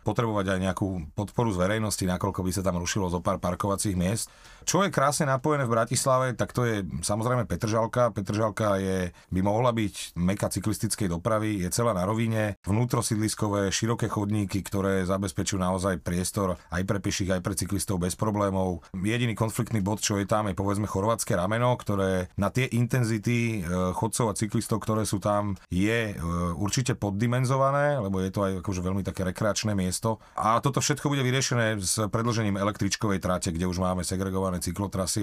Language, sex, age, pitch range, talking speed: Slovak, male, 30-49, 95-115 Hz, 170 wpm